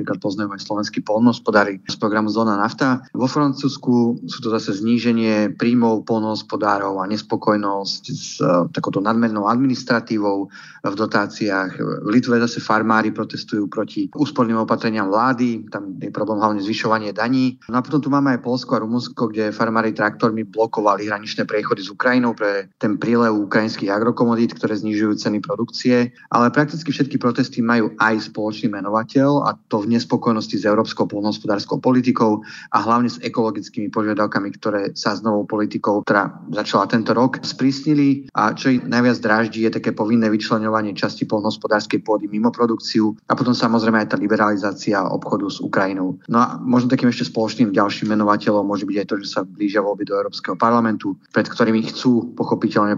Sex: male